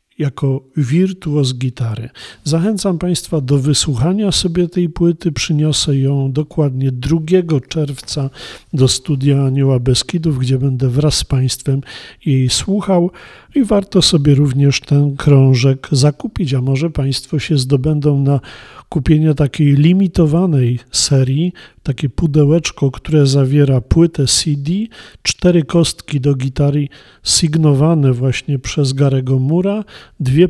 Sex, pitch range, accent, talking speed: male, 135-165 Hz, native, 115 wpm